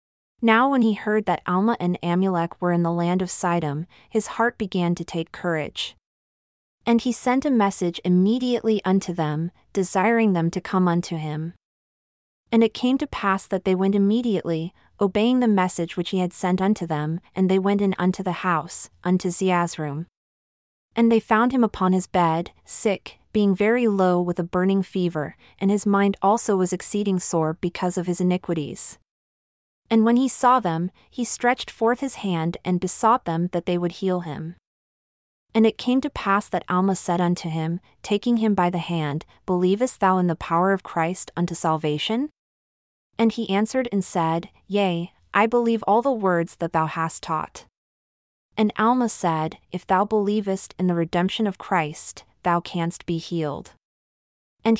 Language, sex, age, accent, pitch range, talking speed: English, female, 30-49, American, 175-215 Hz, 175 wpm